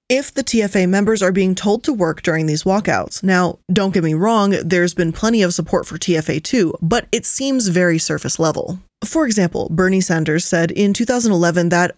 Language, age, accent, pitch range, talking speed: English, 20-39, American, 175-235 Hz, 195 wpm